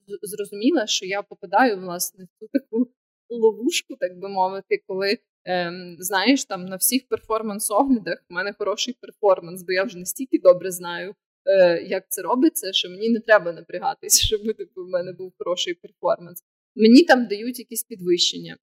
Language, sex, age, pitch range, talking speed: Ukrainian, female, 20-39, 195-260 Hz, 150 wpm